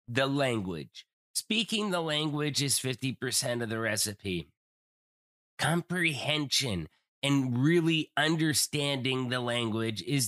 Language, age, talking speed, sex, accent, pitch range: English, 30-49, 100 wpm, male, American, 125-145 Hz